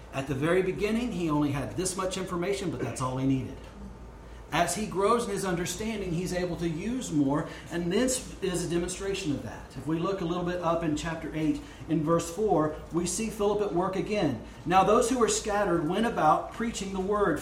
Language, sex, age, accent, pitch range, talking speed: English, male, 40-59, American, 145-200 Hz, 215 wpm